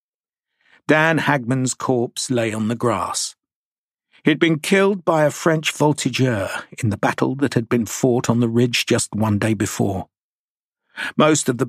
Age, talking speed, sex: 50-69, 160 wpm, male